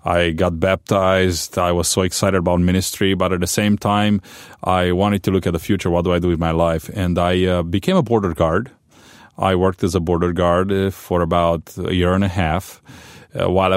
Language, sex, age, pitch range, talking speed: English, male, 30-49, 85-100 Hz, 220 wpm